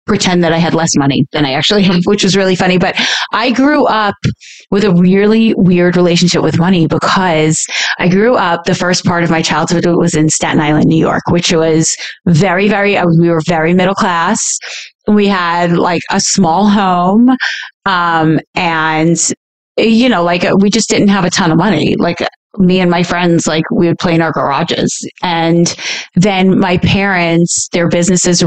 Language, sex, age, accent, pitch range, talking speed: English, female, 30-49, American, 160-190 Hz, 185 wpm